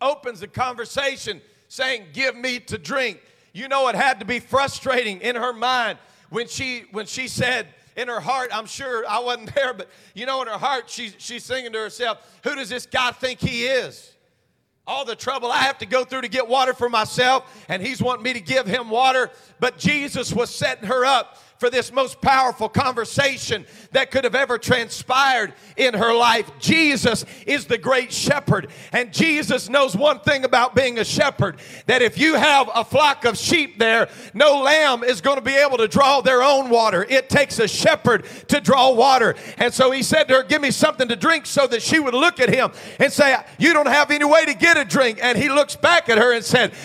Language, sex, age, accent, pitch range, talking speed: English, male, 40-59, American, 240-275 Hz, 215 wpm